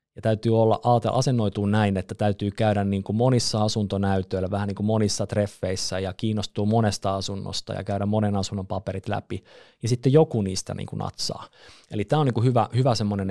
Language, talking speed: Finnish, 185 wpm